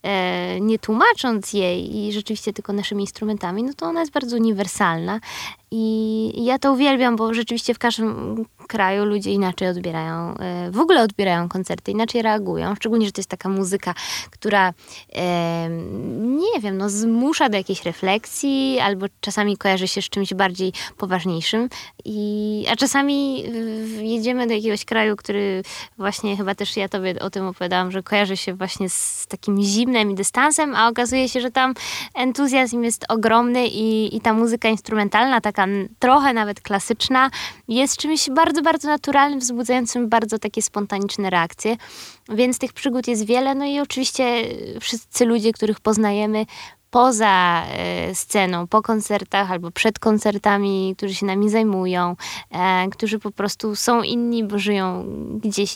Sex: female